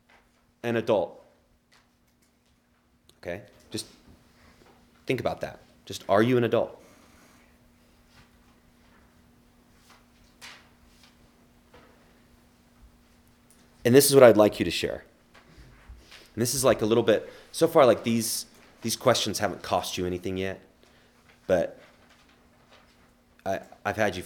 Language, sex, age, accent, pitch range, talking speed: English, male, 30-49, American, 85-135 Hz, 105 wpm